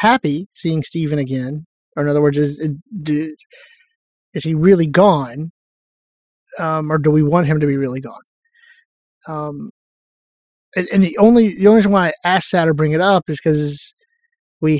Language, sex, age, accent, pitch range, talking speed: English, male, 30-49, American, 150-190 Hz, 175 wpm